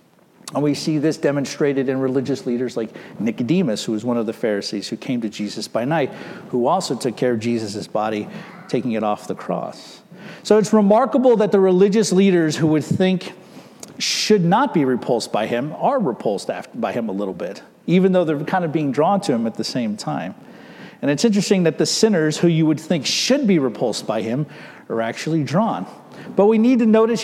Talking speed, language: 205 wpm, English